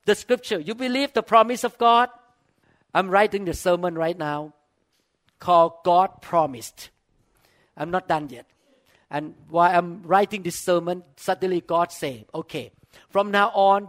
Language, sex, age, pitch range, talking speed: English, male, 50-69, 165-220 Hz, 145 wpm